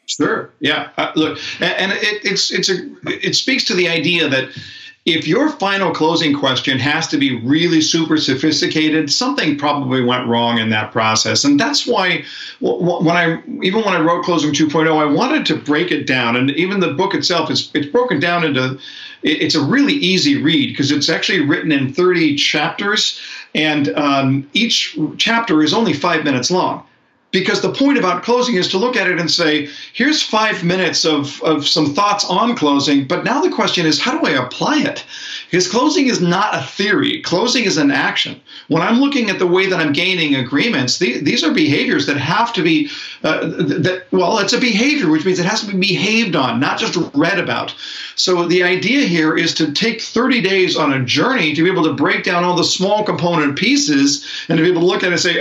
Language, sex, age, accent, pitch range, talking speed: English, male, 50-69, American, 150-220 Hz, 205 wpm